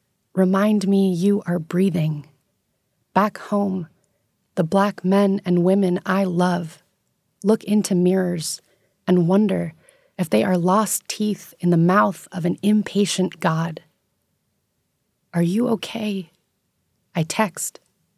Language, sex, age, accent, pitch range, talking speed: English, female, 30-49, American, 180-215 Hz, 120 wpm